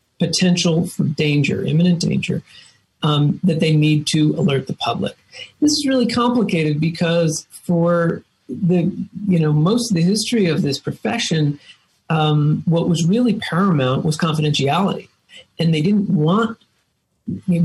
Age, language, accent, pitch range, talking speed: 40-59, English, American, 150-195 Hz, 140 wpm